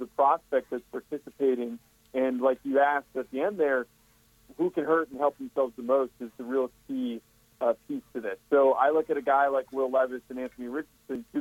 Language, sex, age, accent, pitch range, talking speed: English, male, 40-59, American, 130-160 Hz, 215 wpm